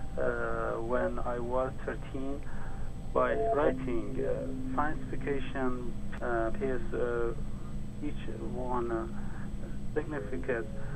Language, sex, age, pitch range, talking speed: English, male, 40-59, 115-140 Hz, 95 wpm